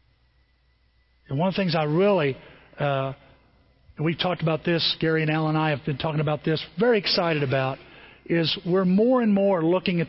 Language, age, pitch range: English, 50-69, 155-225 Hz